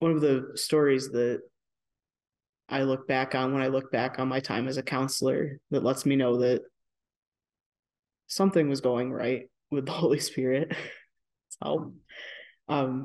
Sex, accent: male, American